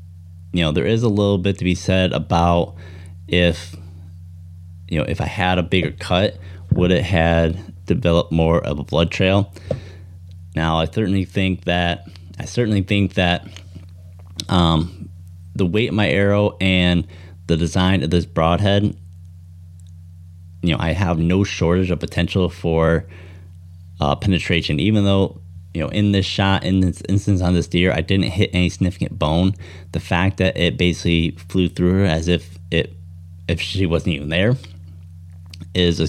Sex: male